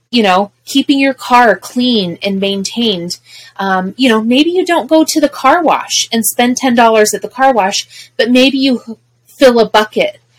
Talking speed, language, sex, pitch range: 185 wpm, English, female, 165-225 Hz